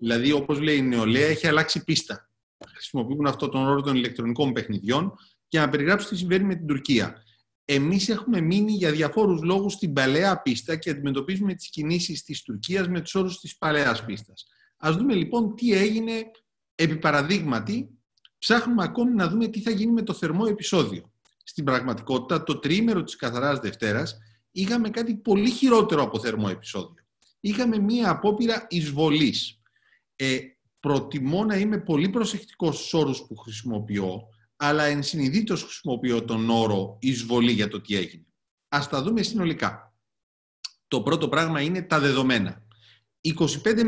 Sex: male